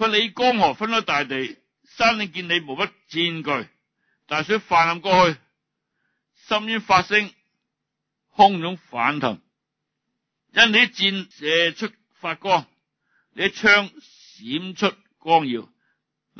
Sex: male